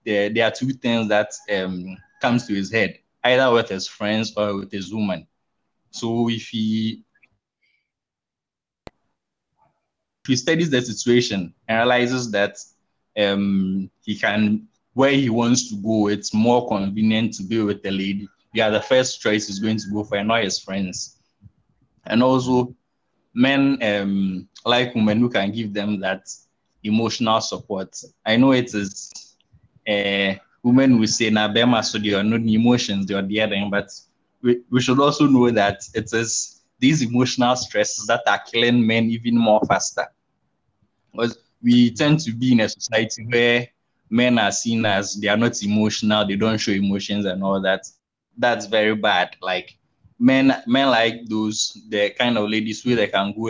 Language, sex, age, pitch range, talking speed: English, male, 20-39, 100-120 Hz, 170 wpm